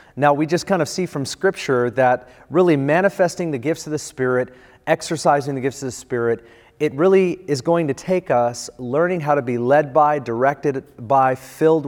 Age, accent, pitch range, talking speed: 30-49, American, 125-155 Hz, 190 wpm